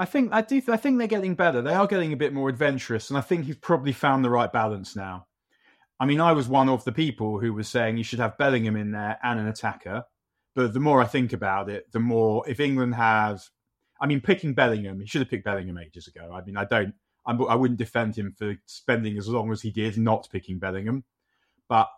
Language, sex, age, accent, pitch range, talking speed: English, male, 30-49, British, 105-130 Hz, 240 wpm